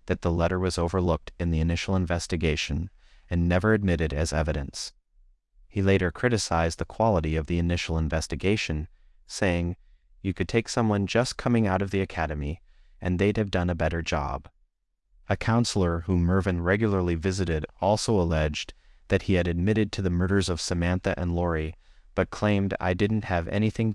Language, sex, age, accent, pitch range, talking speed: English, male, 30-49, American, 80-95 Hz, 165 wpm